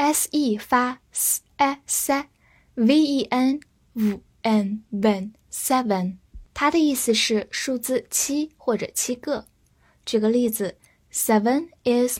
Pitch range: 220-285 Hz